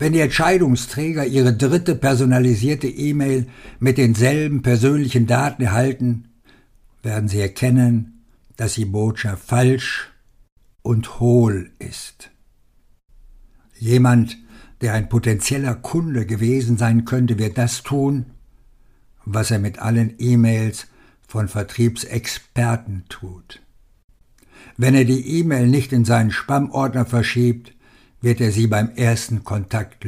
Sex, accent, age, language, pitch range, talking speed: male, German, 60-79, German, 115-130 Hz, 110 wpm